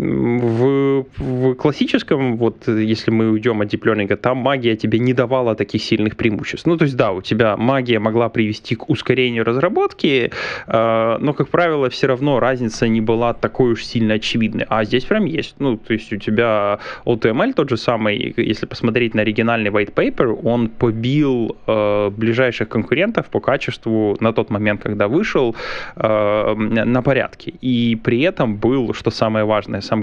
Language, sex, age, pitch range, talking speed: Russian, male, 20-39, 110-125 Hz, 170 wpm